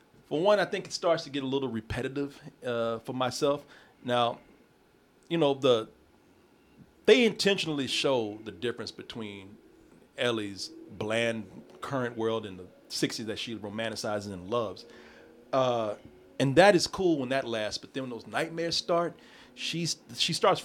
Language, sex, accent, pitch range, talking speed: English, male, American, 105-145 Hz, 155 wpm